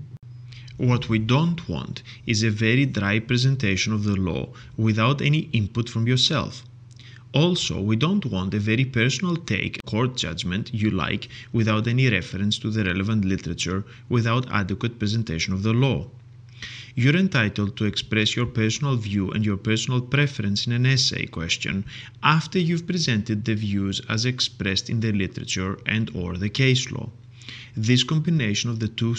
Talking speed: 160 wpm